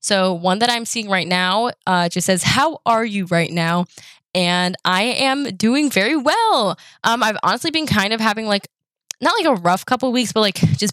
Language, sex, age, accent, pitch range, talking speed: English, female, 10-29, American, 180-215 Hz, 215 wpm